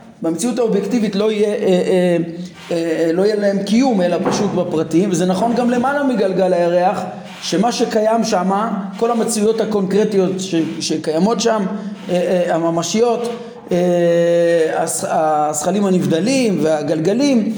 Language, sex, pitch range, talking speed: Hebrew, male, 185-240 Hz, 120 wpm